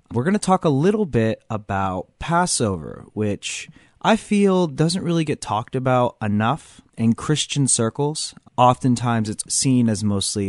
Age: 30-49